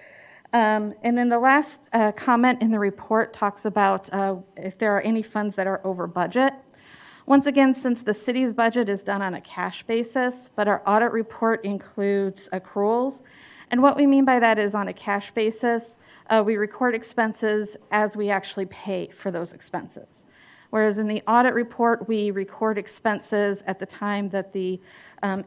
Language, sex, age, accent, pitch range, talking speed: English, female, 40-59, American, 195-230 Hz, 180 wpm